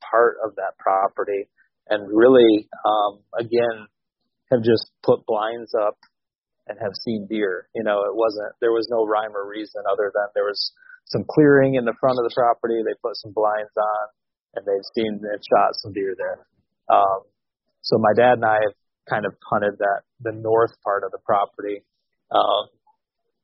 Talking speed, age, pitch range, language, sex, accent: 180 wpm, 30-49, 105-160 Hz, English, male, American